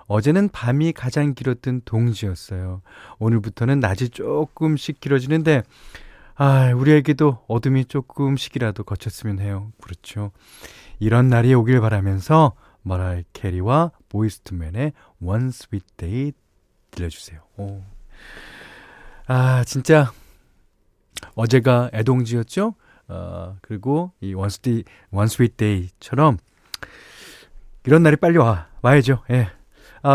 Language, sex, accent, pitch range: Korean, male, native, 100-145 Hz